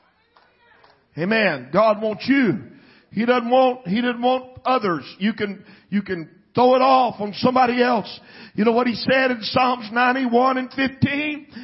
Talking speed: 165 wpm